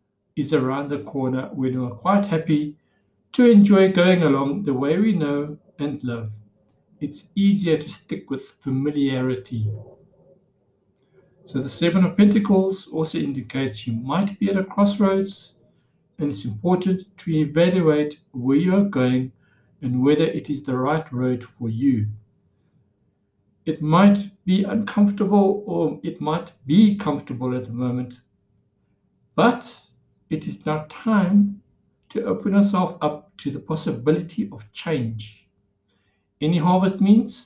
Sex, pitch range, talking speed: male, 125-185 Hz, 135 wpm